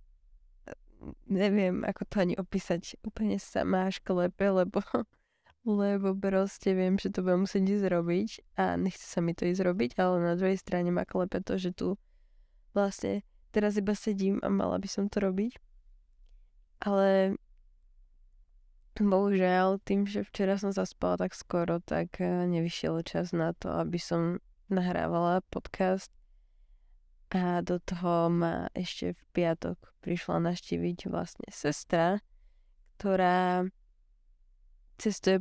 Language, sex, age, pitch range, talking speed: Slovak, female, 20-39, 165-195 Hz, 125 wpm